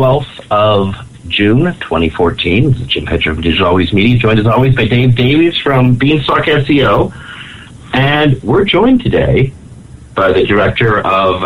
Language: English